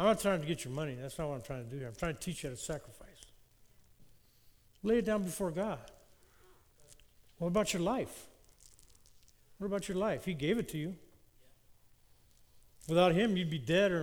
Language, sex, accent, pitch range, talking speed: English, male, American, 170-230 Hz, 200 wpm